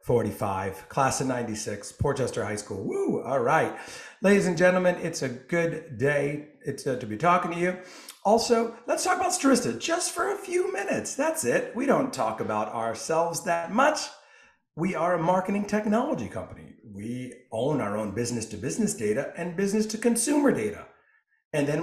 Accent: American